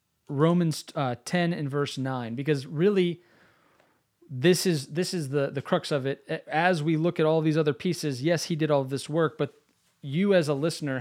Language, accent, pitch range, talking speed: English, American, 135-165 Hz, 195 wpm